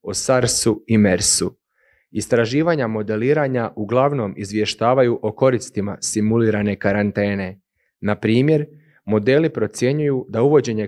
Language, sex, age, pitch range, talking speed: Croatian, male, 30-49, 105-135 Hz, 95 wpm